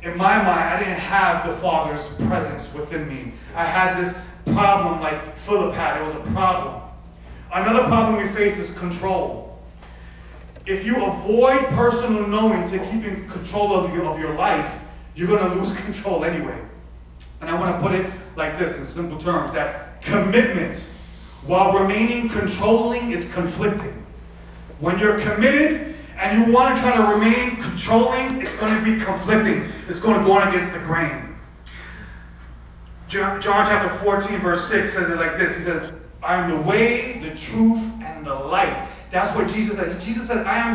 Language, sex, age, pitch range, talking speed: English, male, 30-49, 165-225 Hz, 170 wpm